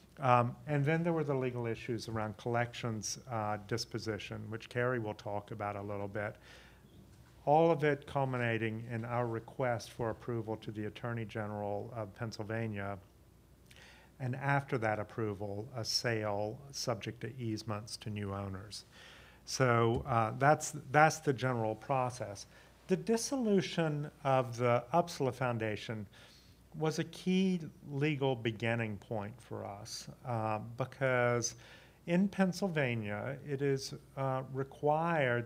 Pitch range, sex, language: 110-135 Hz, male, English